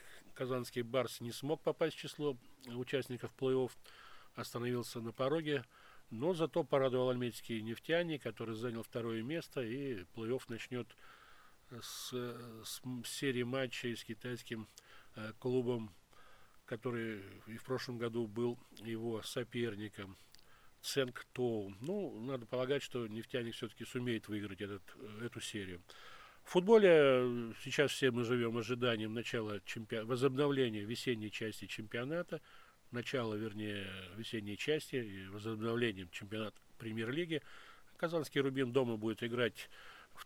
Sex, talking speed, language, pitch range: male, 115 wpm, Russian, 115-135 Hz